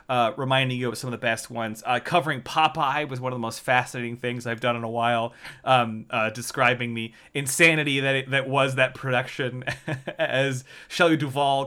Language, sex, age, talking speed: English, male, 30-49, 195 wpm